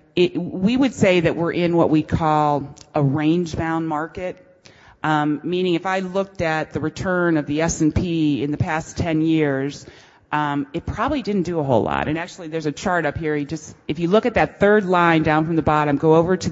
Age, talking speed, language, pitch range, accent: 30-49, 205 wpm, English, 150-175 Hz, American